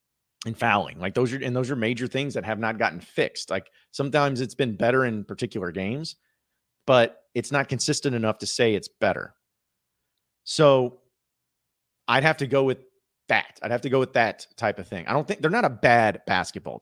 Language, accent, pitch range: English, American, 95-125 Hz